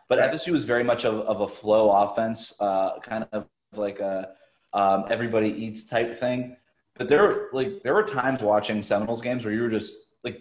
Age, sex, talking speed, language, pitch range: 20-39, male, 200 wpm, English, 110-130 Hz